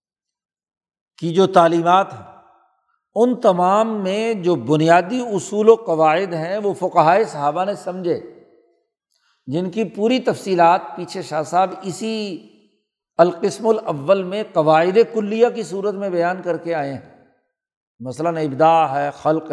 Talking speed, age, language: 130 wpm, 60-79, Urdu